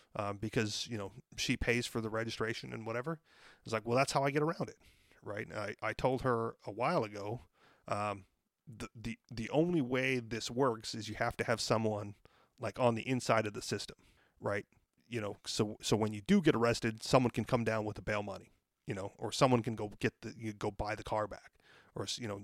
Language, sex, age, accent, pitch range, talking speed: English, male, 30-49, American, 110-130 Hz, 225 wpm